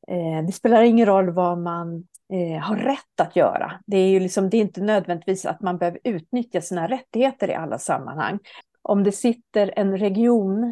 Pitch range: 175-215 Hz